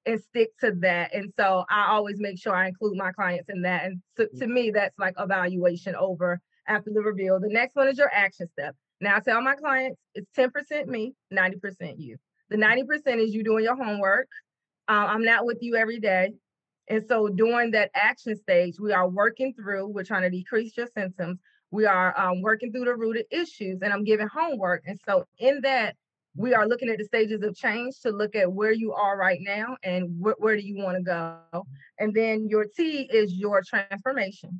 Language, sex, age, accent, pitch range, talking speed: English, female, 30-49, American, 195-250 Hz, 210 wpm